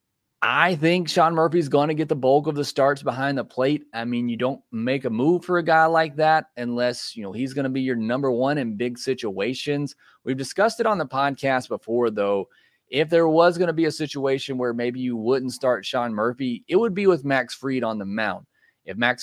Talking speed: 220 wpm